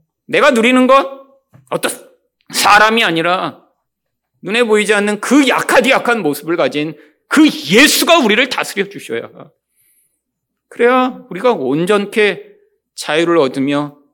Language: Korean